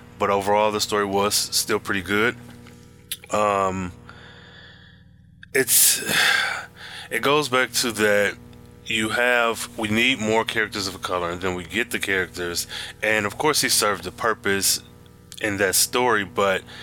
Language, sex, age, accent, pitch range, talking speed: English, male, 20-39, American, 95-110 Hz, 145 wpm